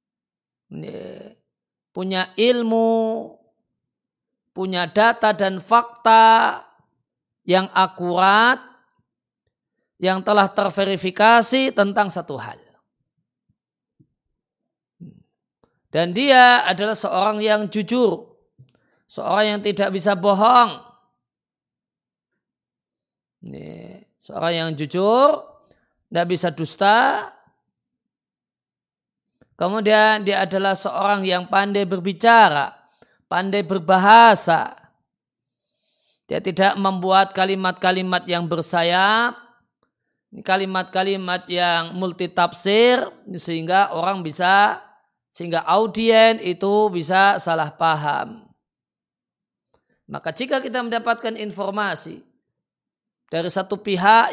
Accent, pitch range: native, 185-225 Hz